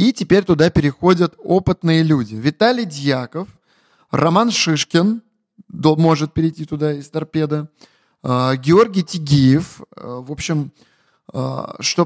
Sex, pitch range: male, 135-180 Hz